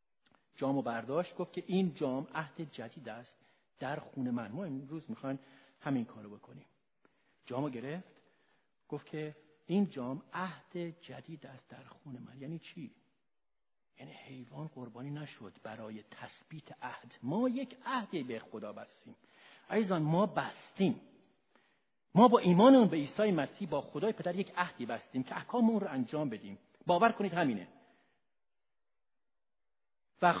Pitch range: 135-185 Hz